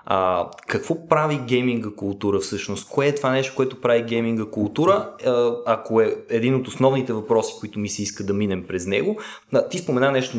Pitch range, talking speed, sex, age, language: 110-135 Hz, 175 wpm, male, 20-39, Bulgarian